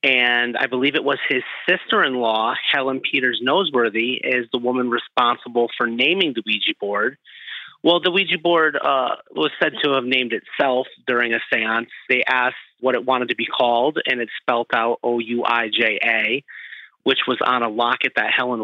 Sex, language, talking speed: male, English, 170 wpm